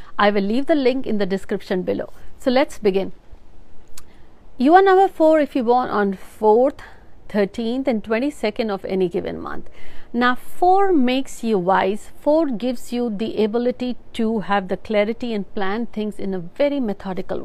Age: 50-69